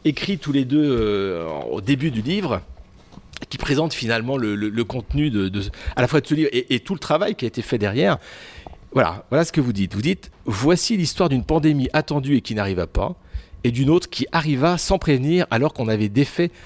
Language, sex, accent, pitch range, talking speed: French, male, French, 105-145 Hz, 225 wpm